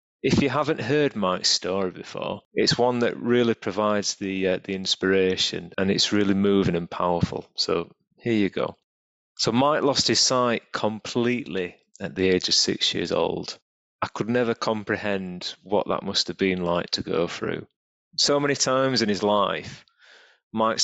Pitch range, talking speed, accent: 95-110 Hz, 170 wpm, British